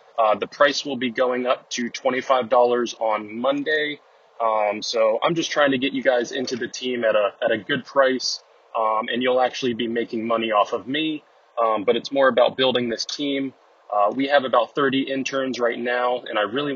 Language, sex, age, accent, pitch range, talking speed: English, male, 20-39, American, 120-140 Hz, 210 wpm